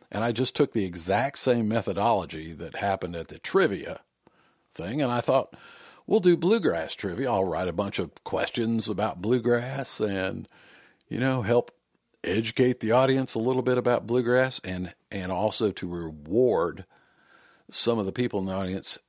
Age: 50-69